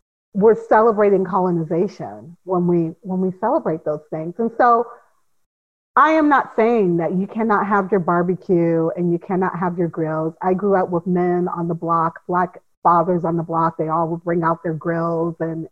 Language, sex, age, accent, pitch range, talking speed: English, female, 40-59, American, 165-185 Hz, 185 wpm